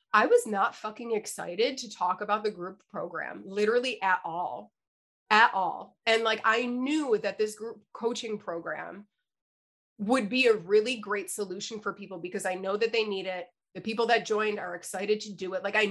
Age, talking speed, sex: 30-49, 190 wpm, female